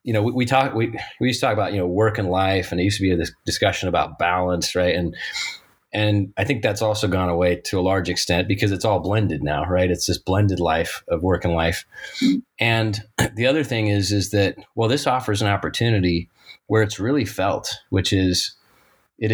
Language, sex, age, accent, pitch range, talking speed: English, male, 30-49, American, 90-110 Hz, 220 wpm